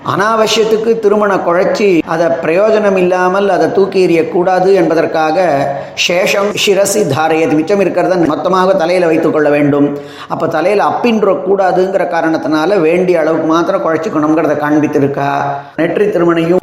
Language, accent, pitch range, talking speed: Tamil, native, 155-195 Hz, 90 wpm